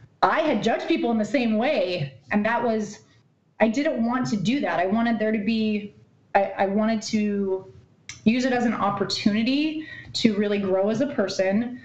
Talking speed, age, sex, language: 185 wpm, 30-49, female, English